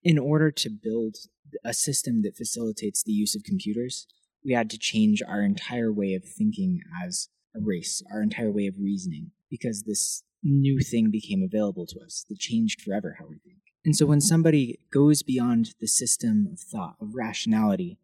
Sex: male